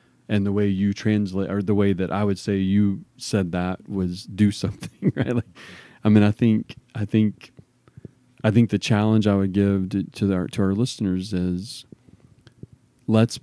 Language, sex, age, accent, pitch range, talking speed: English, male, 40-59, American, 95-120 Hz, 185 wpm